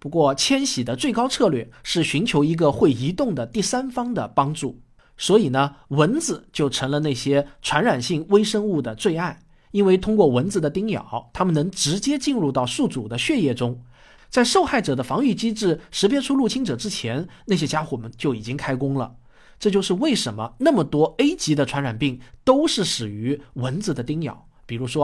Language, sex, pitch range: Chinese, male, 130-205 Hz